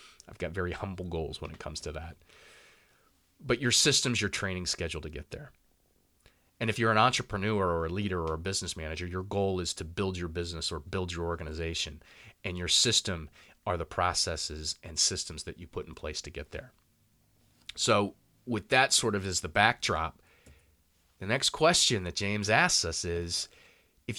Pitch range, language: 85-115 Hz, English